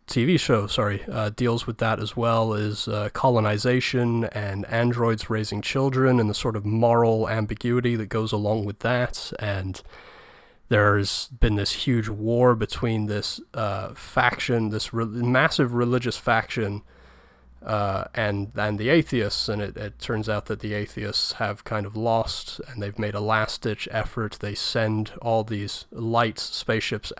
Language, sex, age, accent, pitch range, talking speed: English, male, 30-49, American, 105-120 Hz, 155 wpm